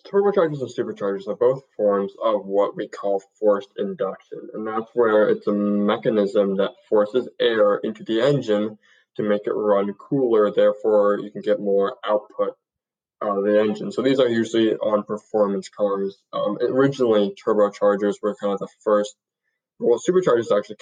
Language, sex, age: English, male, 10-29